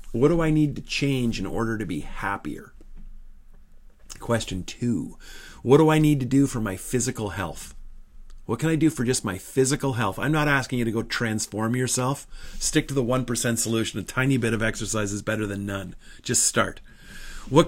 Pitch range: 110-150 Hz